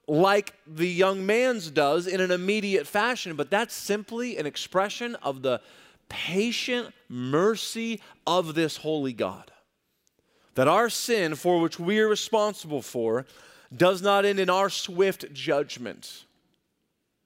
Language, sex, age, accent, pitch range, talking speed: English, male, 40-59, American, 155-205 Hz, 130 wpm